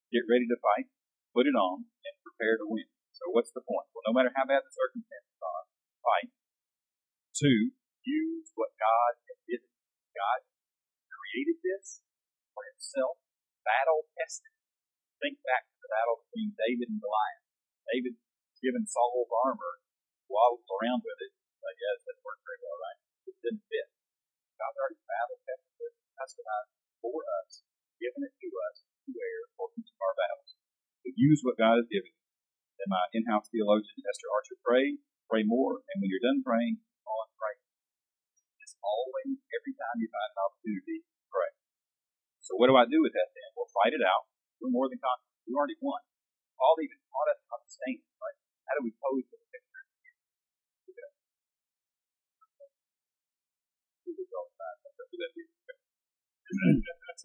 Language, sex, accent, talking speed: English, male, American, 155 wpm